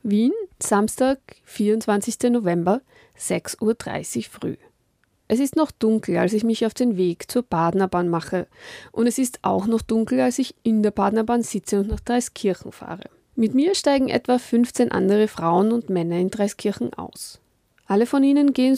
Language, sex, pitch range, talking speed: German, female, 195-250 Hz, 165 wpm